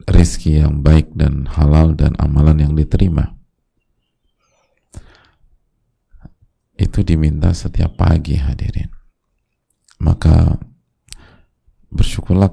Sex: male